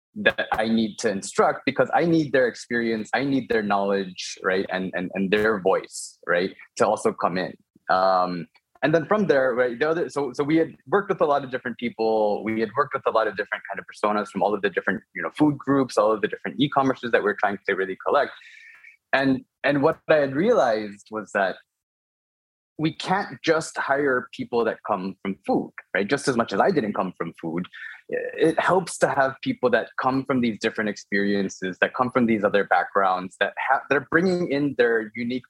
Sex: male